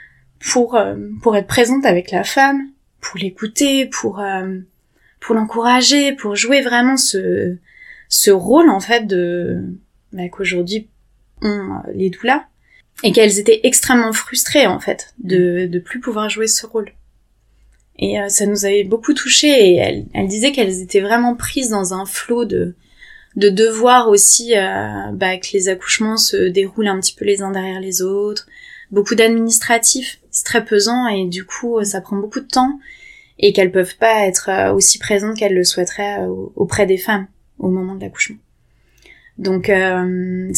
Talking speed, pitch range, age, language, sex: 165 wpm, 190-235 Hz, 20-39, French, female